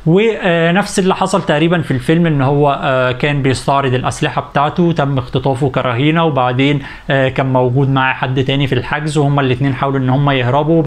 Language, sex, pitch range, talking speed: Arabic, male, 135-165 Hz, 160 wpm